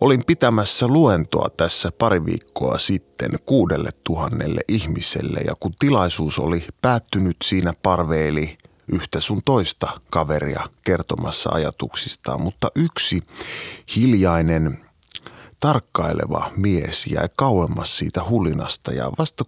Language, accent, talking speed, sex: Finnish, native, 105 wpm, male